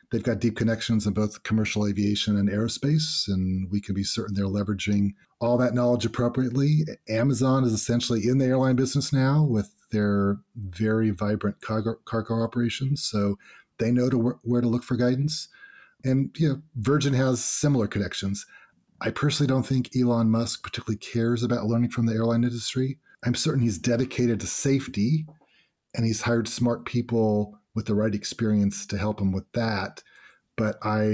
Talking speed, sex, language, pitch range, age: 175 wpm, male, English, 105-125 Hz, 40-59